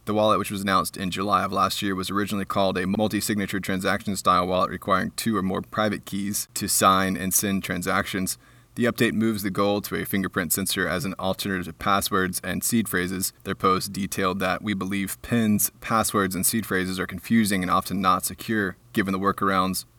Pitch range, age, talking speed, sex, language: 95-100 Hz, 20-39, 195 wpm, male, English